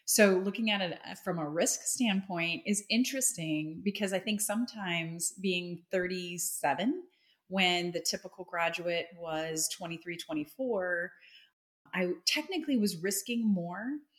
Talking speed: 120 wpm